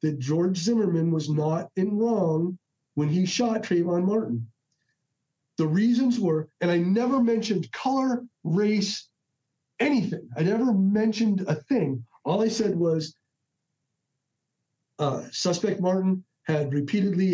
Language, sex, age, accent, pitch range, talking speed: English, male, 40-59, American, 150-195 Hz, 125 wpm